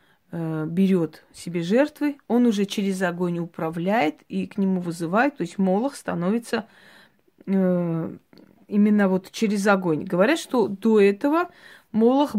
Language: Russian